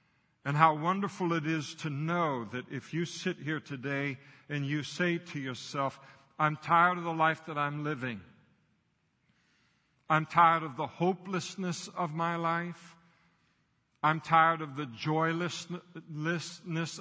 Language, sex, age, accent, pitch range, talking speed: English, male, 60-79, American, 150-170 Hz, 140 wpm